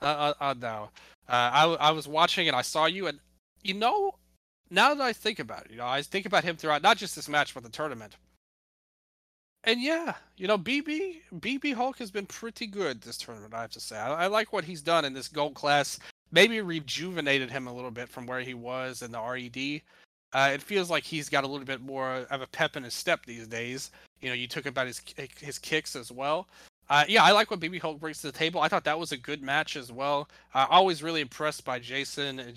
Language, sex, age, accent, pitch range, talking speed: English, male, 30-49, American, 130-175 Hz, 240 wpm